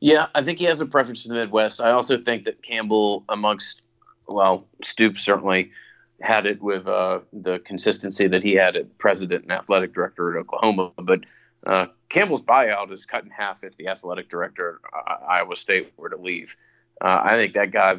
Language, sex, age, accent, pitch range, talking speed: English, male, 30-49, American, 95-110 Hz, 195 wpm